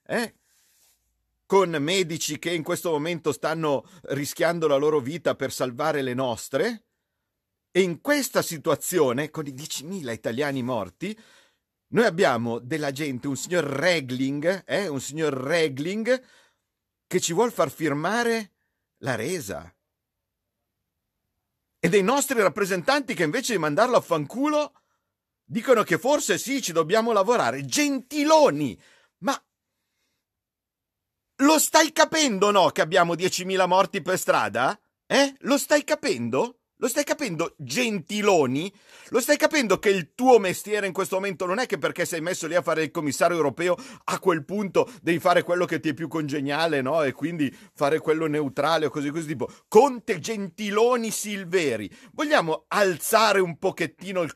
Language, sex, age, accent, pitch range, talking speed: Italian, male, 50-69, native, 145-220 Hz, 145 wpm